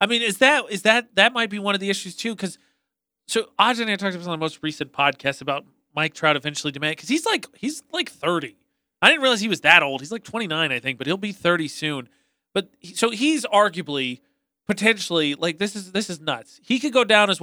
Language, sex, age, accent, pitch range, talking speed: English, male, 30-49, American, 155-225 Hz, 235 wpm